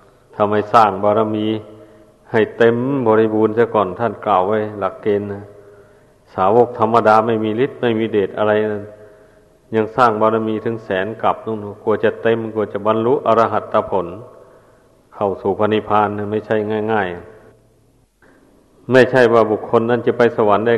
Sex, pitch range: male, 105-115 Hz